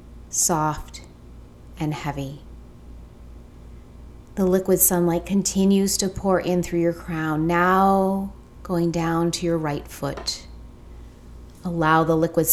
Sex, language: female, English